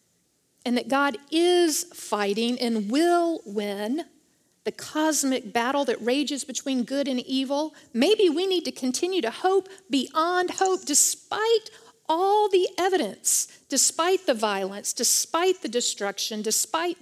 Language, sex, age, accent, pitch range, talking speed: English, female, 50-69, American, 235-325 Hz, 130 wpm